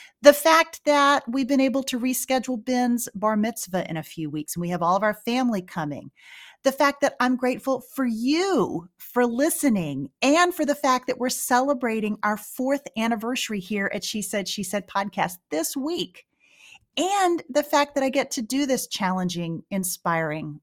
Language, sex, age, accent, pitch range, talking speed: English, female, 40-59, American, 180-270 Hz, 180 wpm